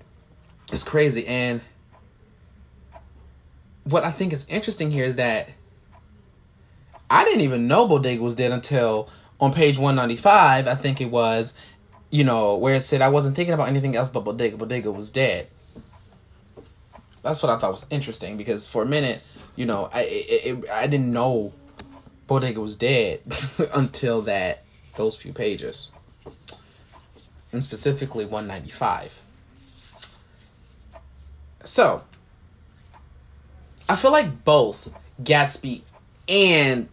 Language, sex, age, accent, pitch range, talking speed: English, male, 20-39, American, 105-145 Hz, 125 wpm